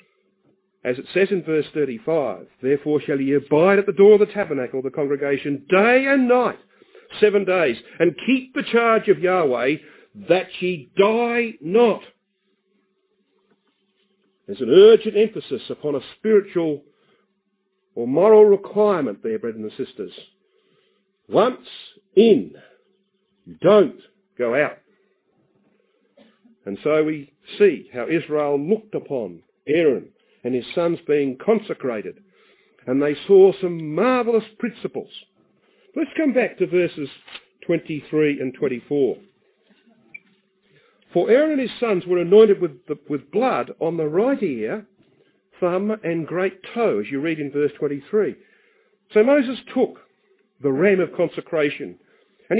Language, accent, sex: English, Australian, male